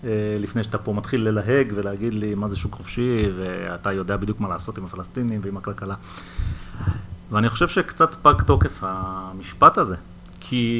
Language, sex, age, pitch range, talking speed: Hebrew, male, 30-49, 100-135 Hz, 155 wpm